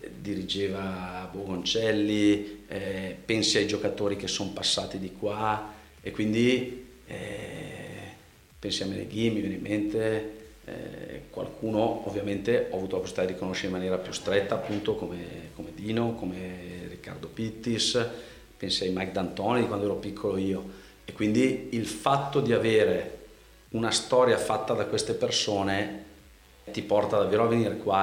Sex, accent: male, native